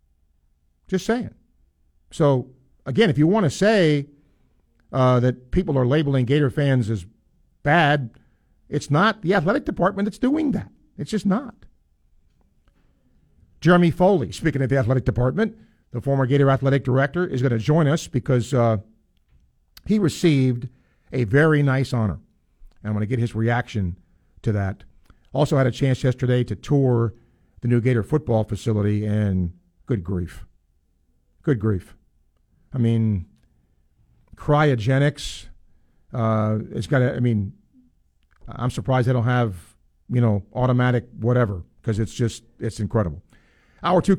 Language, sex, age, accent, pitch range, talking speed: English, male, 50-69, American, 95-145 Hz, 145 wpm